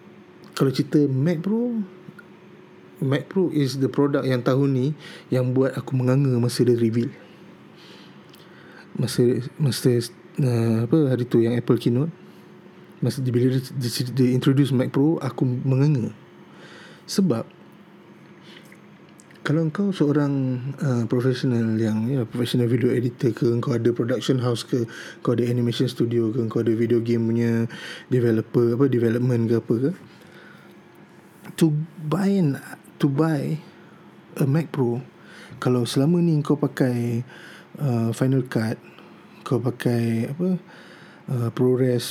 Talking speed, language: 125 wpm, Malay